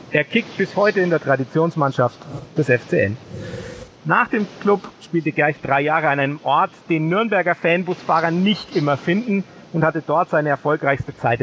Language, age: German, 40-59